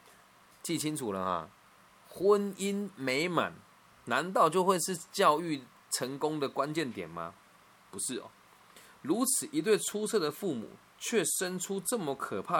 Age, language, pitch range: 20-39, Chinese, 110-185 Hz